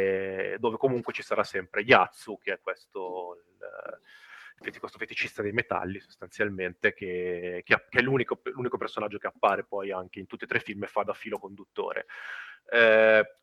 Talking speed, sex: 160 wpm, male